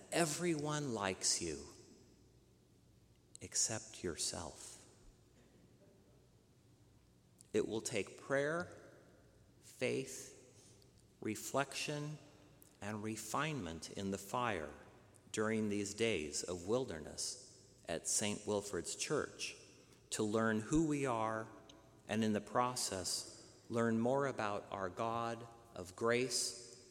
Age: 50-69